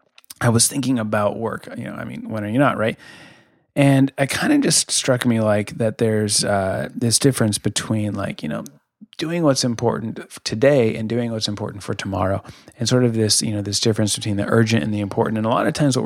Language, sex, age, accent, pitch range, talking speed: English, male, 30-49, American, 110-135 Hz, 230 wpm